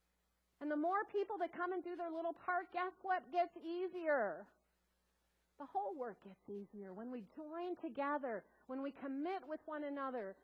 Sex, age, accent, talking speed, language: female, 50-69, American, 170 wpm, English